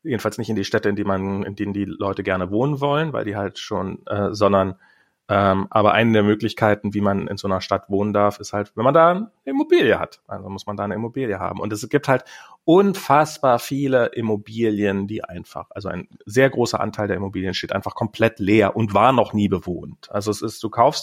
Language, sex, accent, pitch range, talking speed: German, male, German, 100-130 Hz, 225 wpm